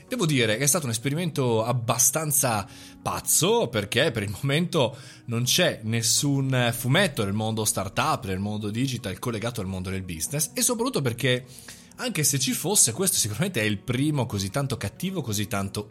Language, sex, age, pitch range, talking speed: Italian, male, 30-49, 110-155 Hz, 170 wpm